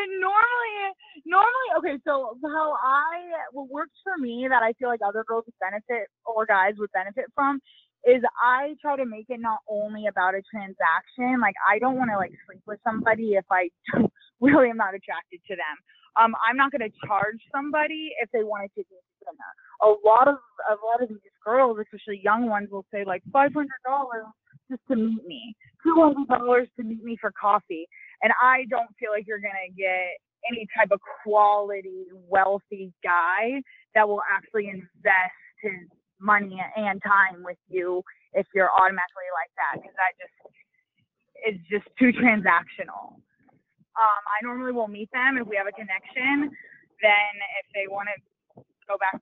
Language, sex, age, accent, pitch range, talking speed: English, female, 20-39, American, 195-255 Hz, 175 wpm